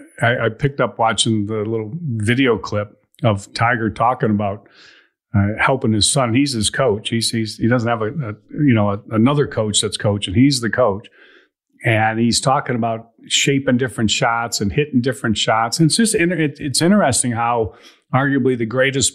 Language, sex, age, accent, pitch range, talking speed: English, male, 40-59, American, 110-140 Hz, 175 wpm